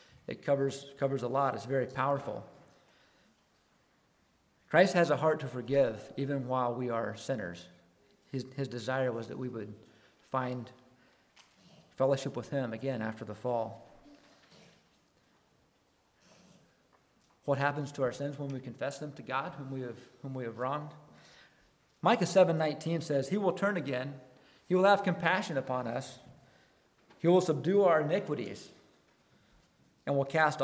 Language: English